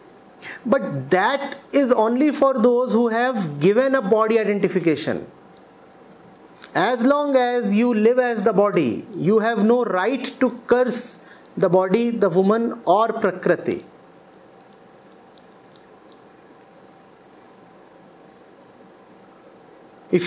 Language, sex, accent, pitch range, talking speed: English, male, Indian, 205-255 Hz, 100 wpm